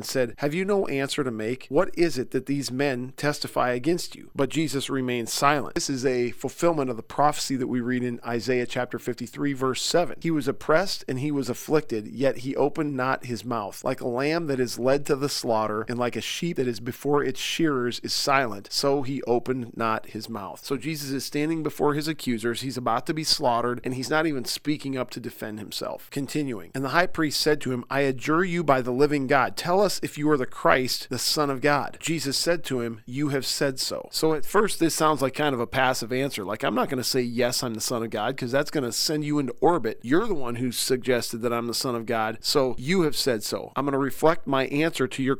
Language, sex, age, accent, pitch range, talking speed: English, male, 40-59, American, 125-150 Hz, 245 wpm